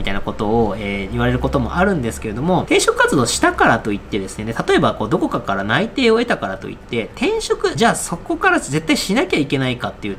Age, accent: 20-39, native